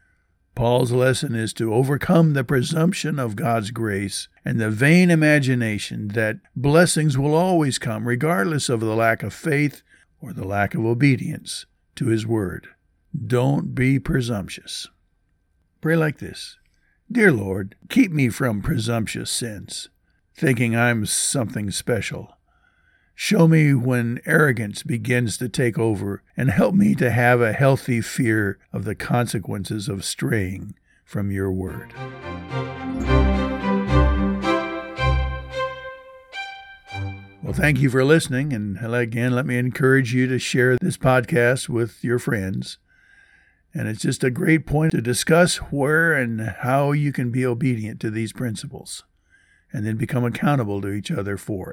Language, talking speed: English, 135 wpm